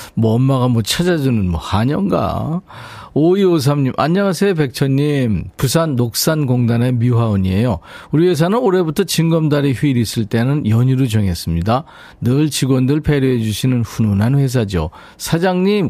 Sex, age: male, 40-59